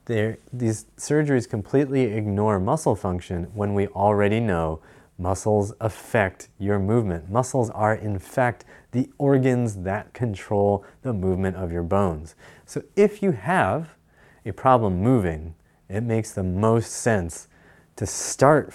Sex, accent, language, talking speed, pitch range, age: male, American, English, 130 wpm, 95-130 Hz, 30-49